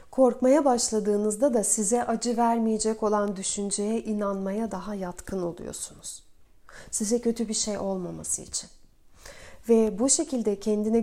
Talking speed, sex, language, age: 120 wpm, female, Turkish, 40-59